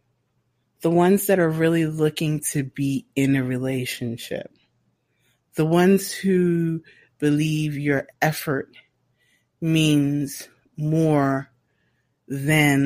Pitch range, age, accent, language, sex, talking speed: 140-175 Hz, 30-49, American, English, female, 95 wpm